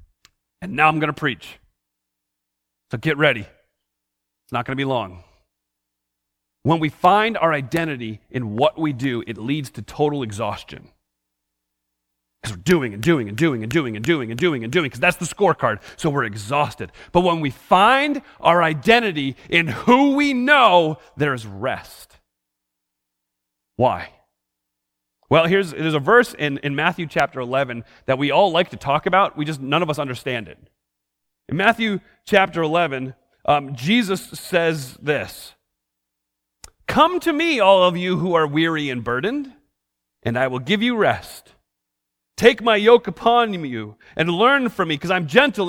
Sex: male